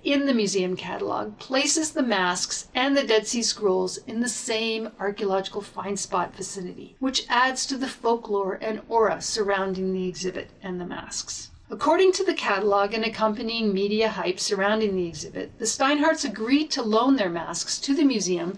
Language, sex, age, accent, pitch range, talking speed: English, female, 50-69, American, 195-245 Hz, 170 wpm